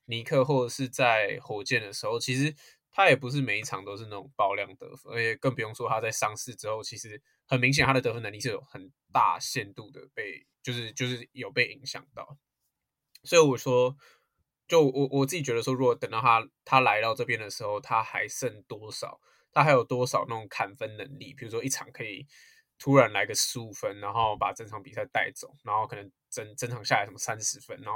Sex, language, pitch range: male, Chinese, 115-140 Hz